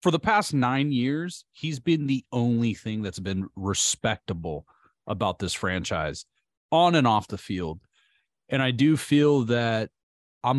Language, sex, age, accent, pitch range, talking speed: English, male, 30-49, American, 100-135 Hz, 155 wpm